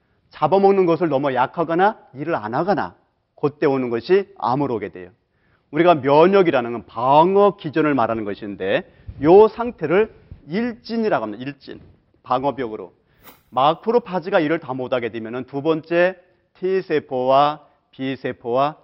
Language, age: Korean, 40-59